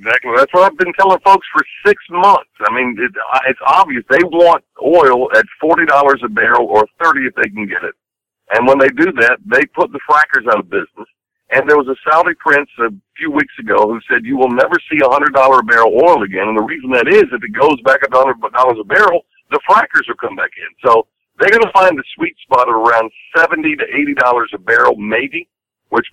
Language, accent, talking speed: English, American, 225 wpm